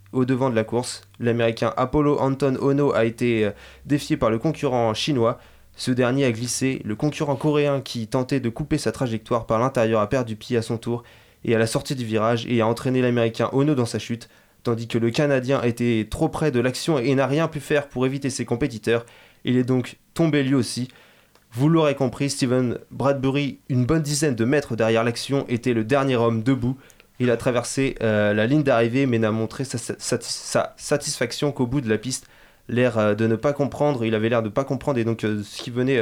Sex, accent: male, French